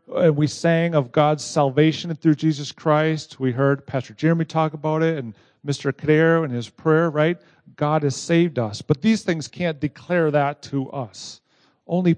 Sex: male